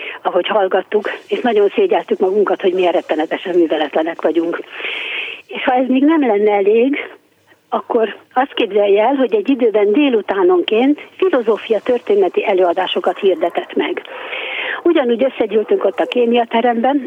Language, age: Hungarian, 60-79